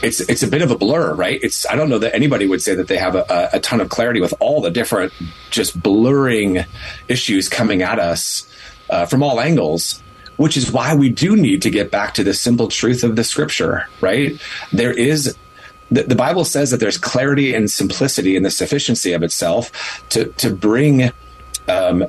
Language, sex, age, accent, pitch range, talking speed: English, male, 30-49, American, 105-145 Hz, 205 wpm